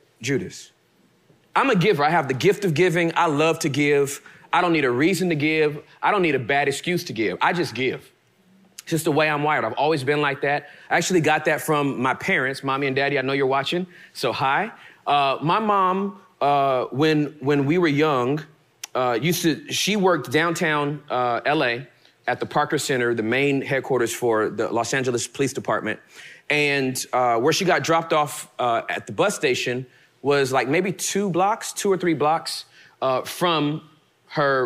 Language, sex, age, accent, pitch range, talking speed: English, male, 30-49, American, 140-180 Hz, 195 wpm